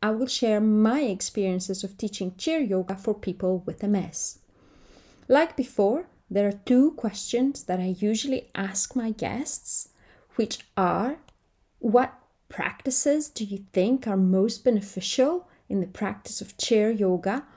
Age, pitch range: 30-49, 190-240 Hz